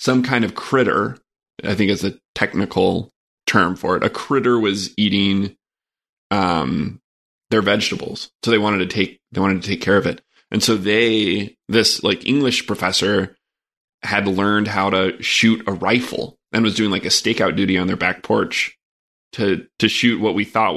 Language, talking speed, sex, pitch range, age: English, 180 wpm, male, 100-120 Hz, 20-39